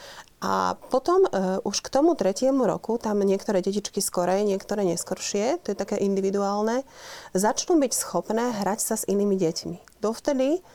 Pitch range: 185-215 Hz